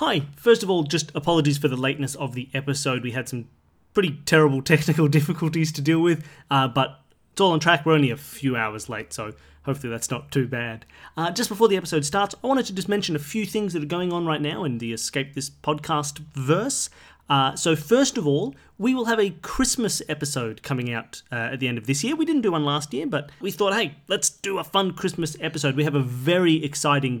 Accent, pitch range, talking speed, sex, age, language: Australian, 135-175 Hz, 235 wpm, male, 30-49, English